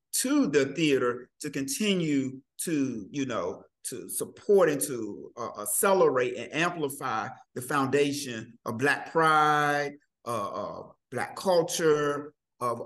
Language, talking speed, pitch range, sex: English, 120 wpm, 130-165 Hz, male